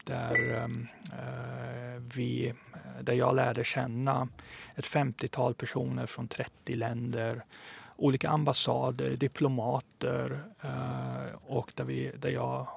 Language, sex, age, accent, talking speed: English, male, 40-59, Swedish, 105 wpm